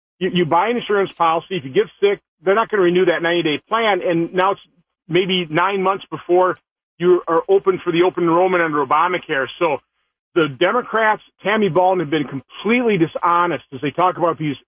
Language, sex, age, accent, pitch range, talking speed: English, male, 40-59, American, 160-190 Hz, 190 wpm